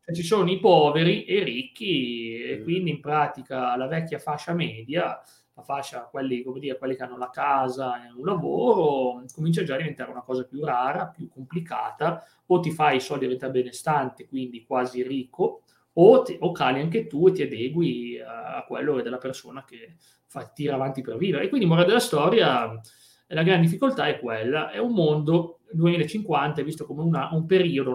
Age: 30-49